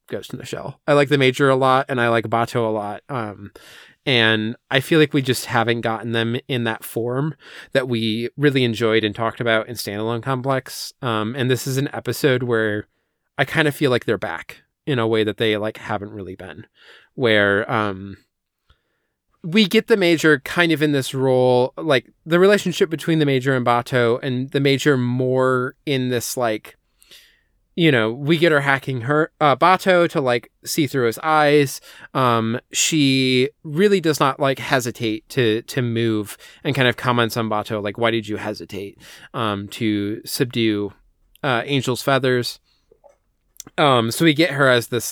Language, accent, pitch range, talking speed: English, American, 115-145 Hz, 180 wpm